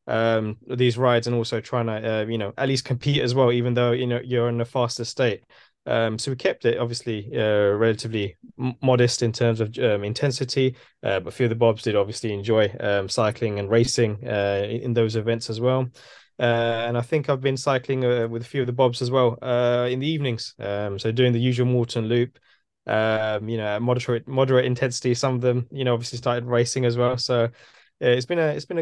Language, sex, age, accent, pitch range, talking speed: English, male, 20-39, British, 110-125 Hz, 230 wpm